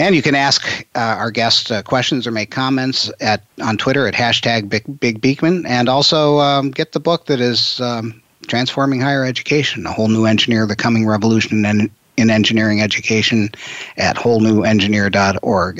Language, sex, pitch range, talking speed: English, male, 105-125 Hz, 170 wpm